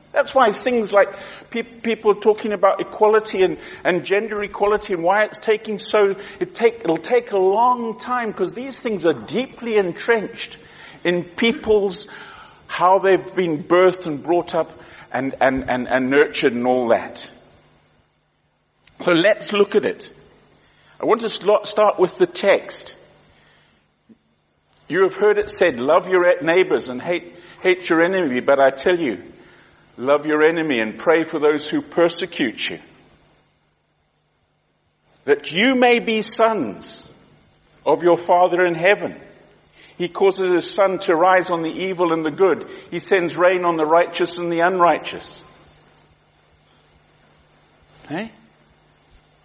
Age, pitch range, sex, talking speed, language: 50-69, 165-210 Hz, male, 145 wpm, English